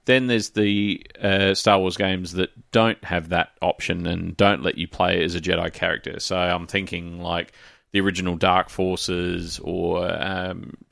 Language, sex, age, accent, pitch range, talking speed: English, male, 30-49, Australian, 90-95 Hz, 170 wpm